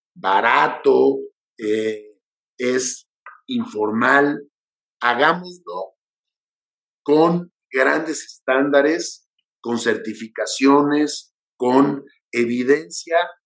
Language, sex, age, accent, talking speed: Spanish, male, 50-69, Mexican, 55 wpm